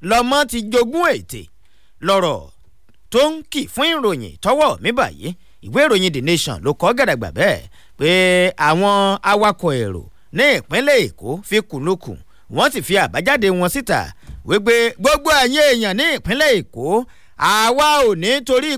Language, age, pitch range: English, 50-69, 160-255 Hz